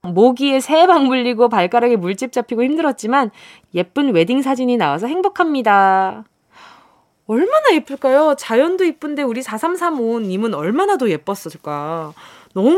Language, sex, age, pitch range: Korean, female, 20-39, 200-315 Hz